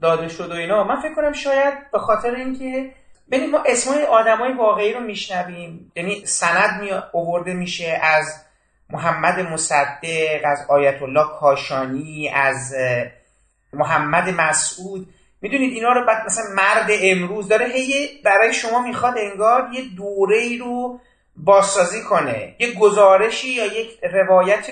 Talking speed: 135 wpm